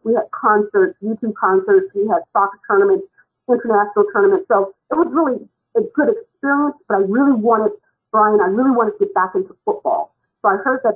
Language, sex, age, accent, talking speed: English, female, 50-69, American, 190 wpm